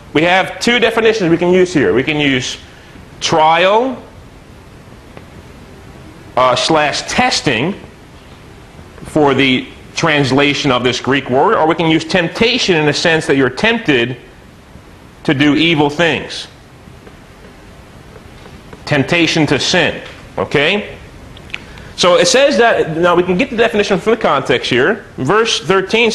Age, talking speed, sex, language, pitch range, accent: 40-59, 130 wpm, male, English, 140-190 Hz, American